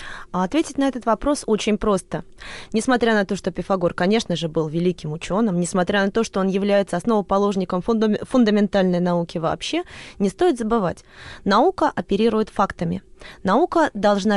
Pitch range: 185-245 Hz